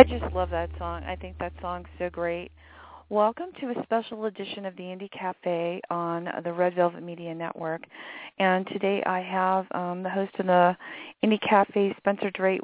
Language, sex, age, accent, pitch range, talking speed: English, female, 40-59, American, 175-210 Hz, 185 wpm